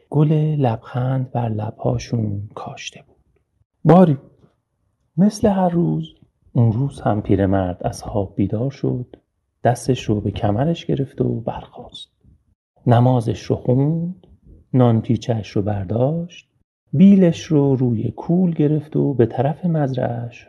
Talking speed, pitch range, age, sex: 120 wpm, 115-160 Hz, 40-59, male